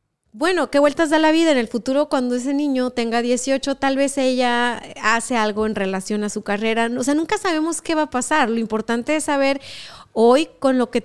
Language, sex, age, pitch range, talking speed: Spanish, female, 30-49, 225-275 Hz, 215 wpm